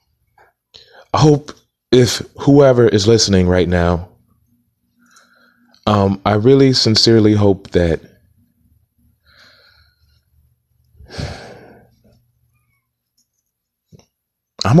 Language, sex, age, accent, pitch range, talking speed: English, male, 30-49, American, 90-120 Hz, 60 wpm